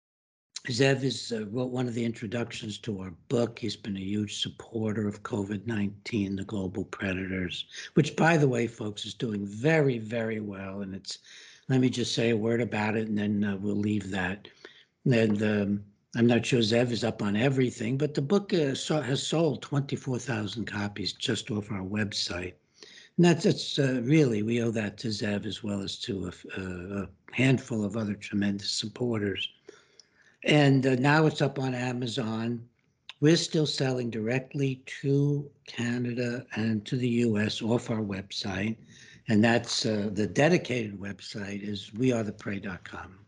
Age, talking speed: 60-79, 160 wpm